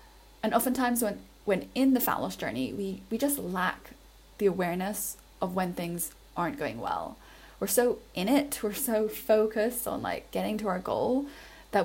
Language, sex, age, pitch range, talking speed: English, female, 10-29, 195-225 Hz, 175 wpm